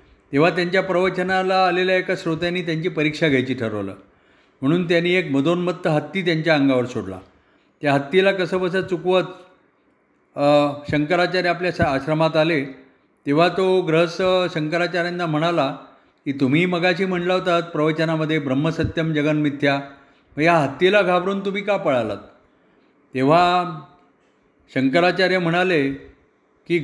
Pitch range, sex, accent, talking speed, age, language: 140-180 Hz, male, native, 115 wpm, 50-69, Marathi